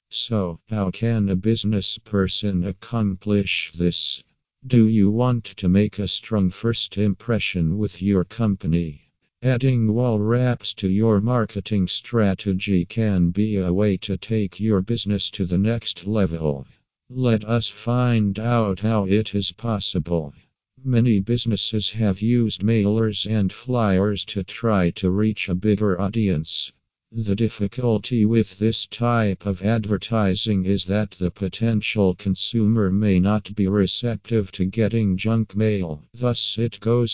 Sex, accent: male, American